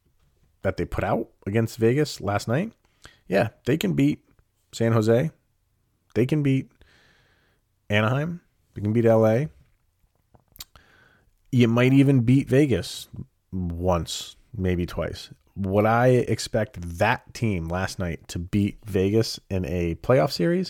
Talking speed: 130 wpm